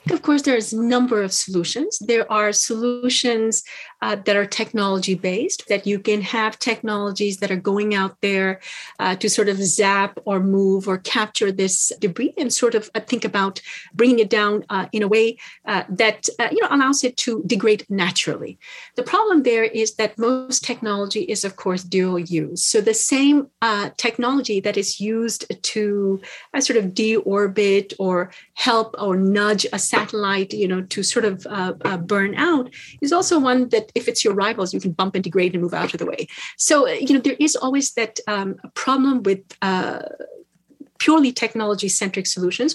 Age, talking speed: 40-59, 185 wpm